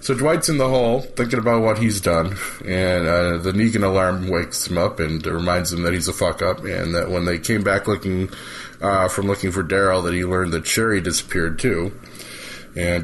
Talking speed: 205 wpm